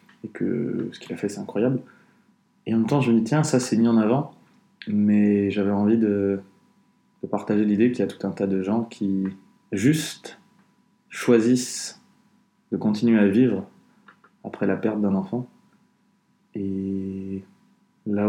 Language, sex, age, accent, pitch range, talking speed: French, male, 20-39, French, 105-155 Hz, 165 wpm